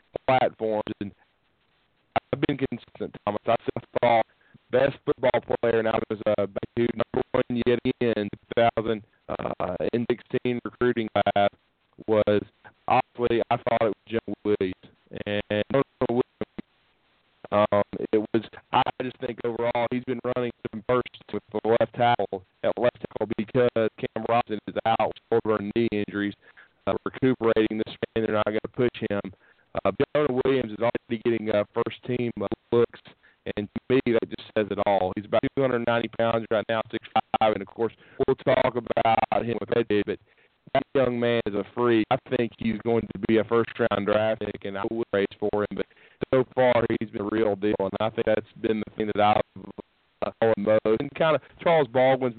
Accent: American